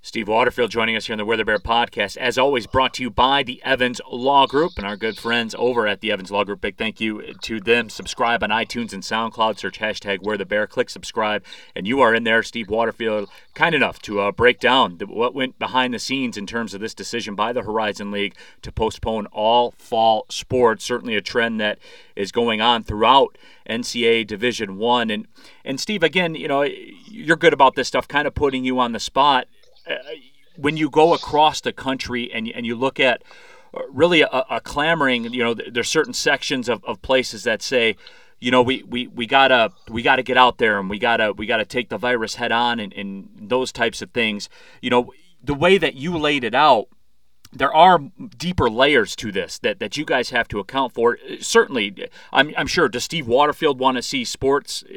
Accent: American